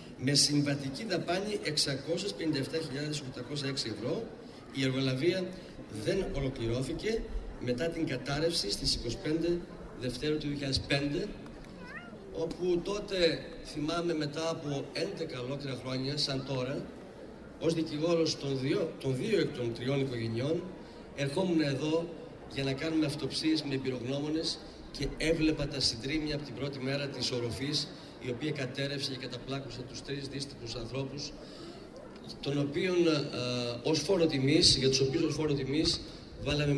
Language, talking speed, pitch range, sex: Greek, 115 wpm, 130-155 Hz, male